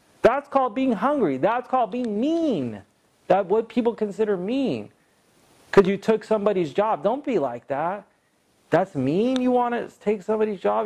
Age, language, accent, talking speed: 30-49, English, American, 165 wpm